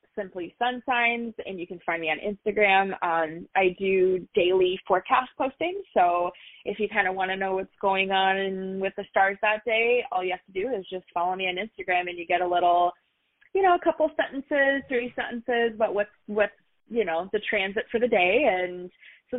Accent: American